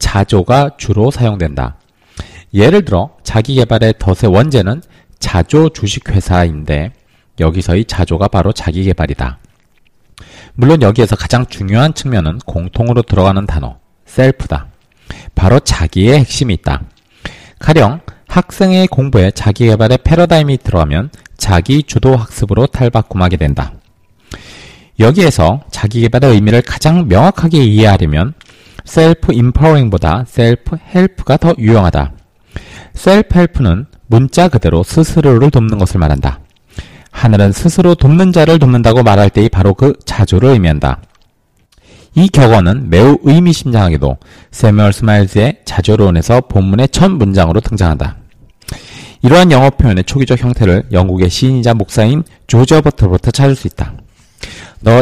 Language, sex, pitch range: Korean, male, 95-135 Hz